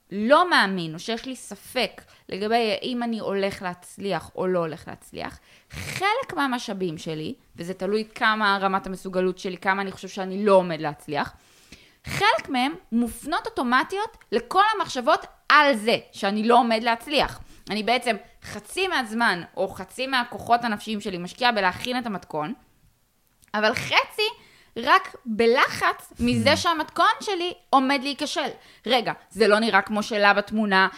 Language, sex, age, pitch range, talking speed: Hebrew, female, 20-39, 205-295 Hz, 140 wpm